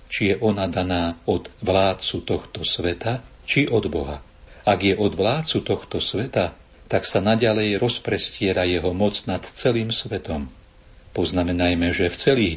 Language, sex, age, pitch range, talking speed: Slovak, male, 50-69, 85-105 Hz, 145 wpm